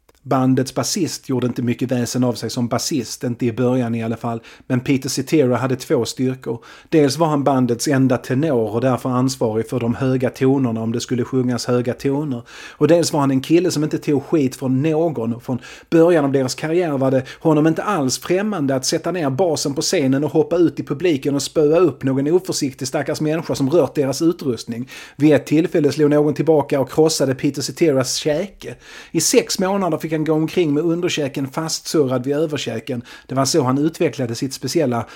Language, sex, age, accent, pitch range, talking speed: Swedish, male, 30-49, native, 125-155 Hz, 200 wpm